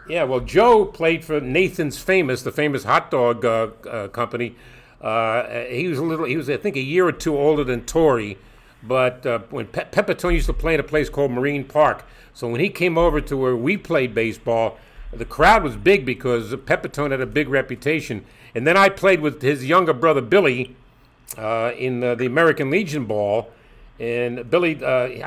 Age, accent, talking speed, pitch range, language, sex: 50-69, American, 195 wpm, 125-165 Hz, English, male